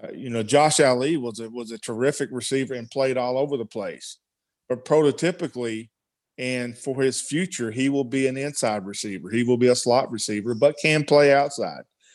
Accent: American